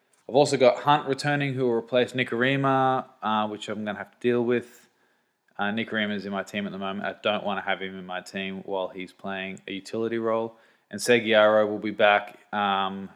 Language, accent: English, Australian